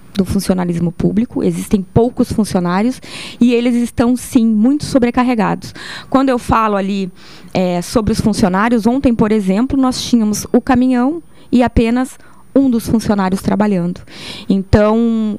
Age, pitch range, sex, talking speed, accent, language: 20-39, 205-255 Hz, female, 135 wpm, Brazilian, Portuguese